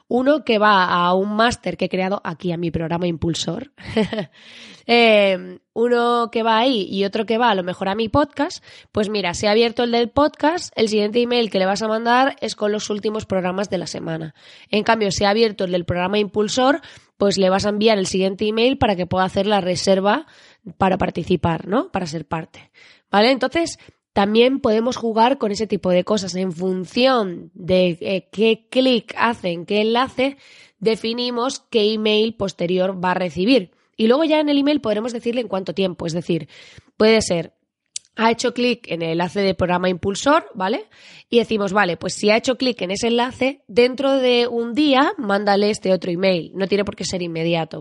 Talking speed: 200 wpm